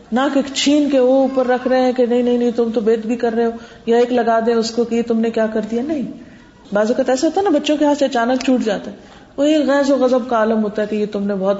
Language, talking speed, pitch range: Urdu, 315 wpm, 210-275 Hz